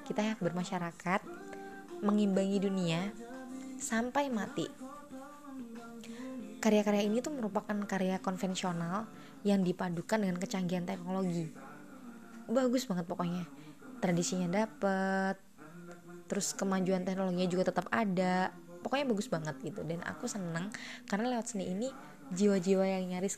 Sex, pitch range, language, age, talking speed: female, 175-215 Hz, Indonesian, 20-39, 110 wpm